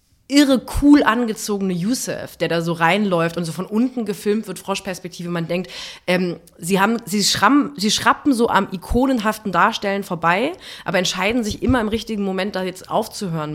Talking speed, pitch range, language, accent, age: 175 wpm, 170-205 Hz, German, German, 30-49